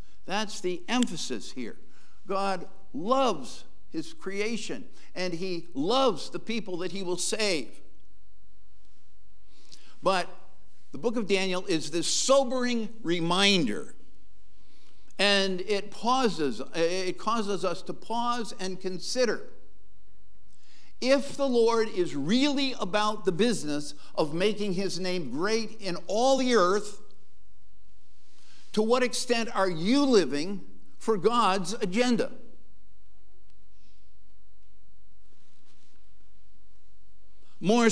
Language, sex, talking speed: English, male, 100 wpm